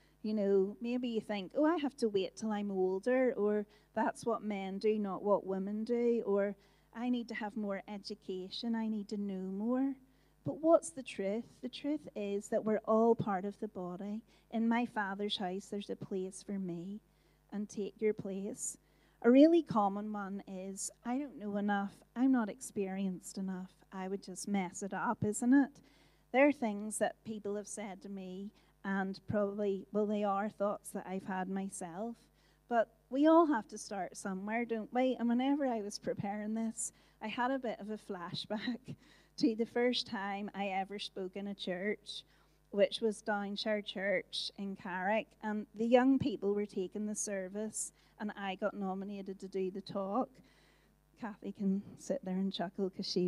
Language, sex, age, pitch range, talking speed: English, female, 40-59, 195-230 Hz, 185 wpm